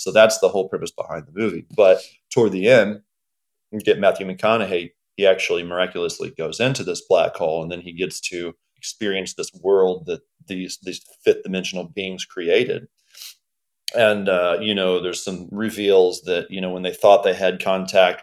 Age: 30-49